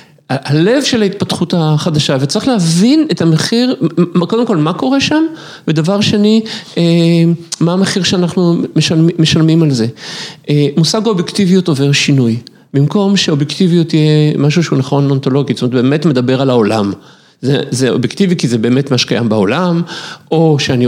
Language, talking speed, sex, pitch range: Hebrew, 150 wpm, male, 140-185 Hz